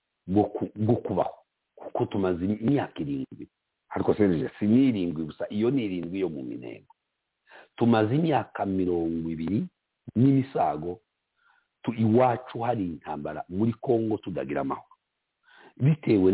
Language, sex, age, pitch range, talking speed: English, male, 50-69, 90-115 Hz, 105 wpm